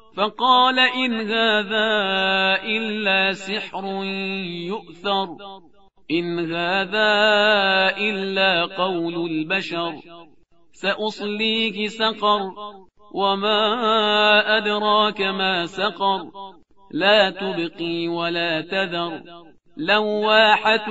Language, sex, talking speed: Persian, male, 65 wpm